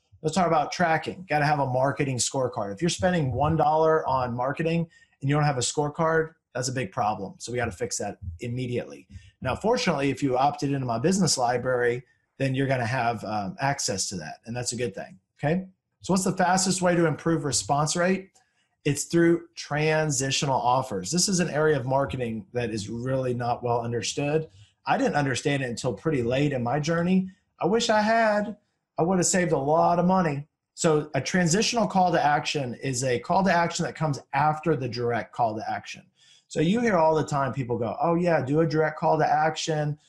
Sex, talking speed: male, 210 wpm